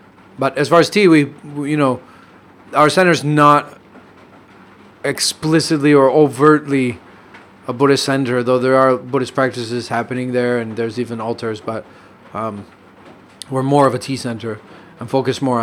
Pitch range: 115-135 Hz